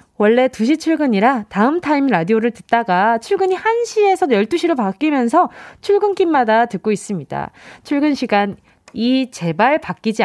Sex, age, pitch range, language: female, 20-39, 210-305 Hz, Korean